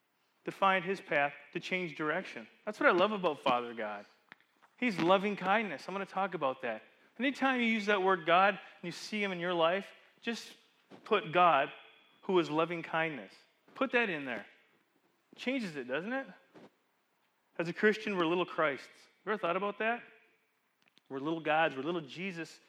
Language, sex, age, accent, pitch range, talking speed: English, male, 30-49, American, 170-210 Hz, 180 wpm